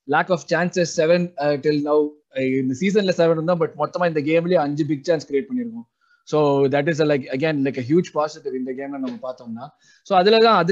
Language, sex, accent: Tamil, male, native